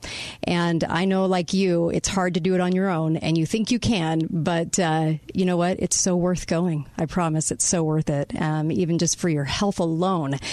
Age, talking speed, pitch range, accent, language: 40-59, 230 wpm, 160-185 Hz, American, English